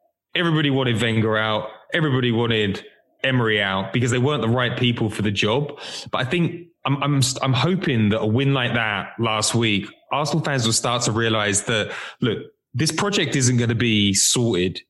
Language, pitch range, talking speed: English, 110-130 Hz, 185 wpm